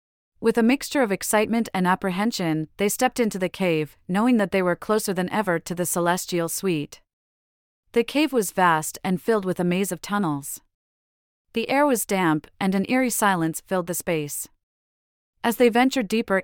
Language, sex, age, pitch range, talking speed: English, female, 30-49, 165-210 Hz, 180 wpm